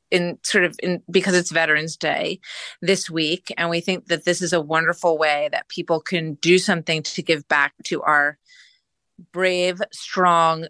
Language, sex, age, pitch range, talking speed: English, female, 30-49, 160-190 Hz, 175 wpm